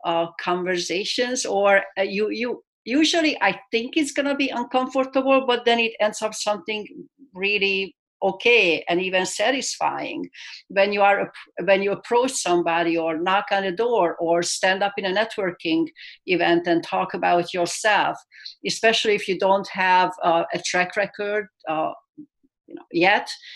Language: English